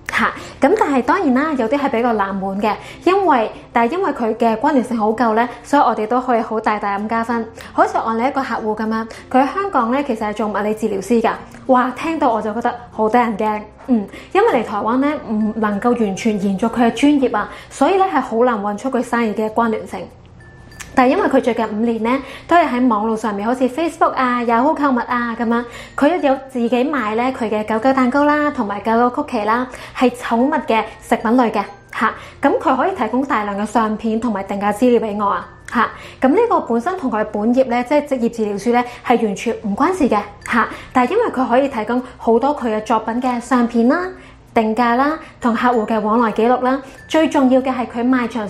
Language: Chinese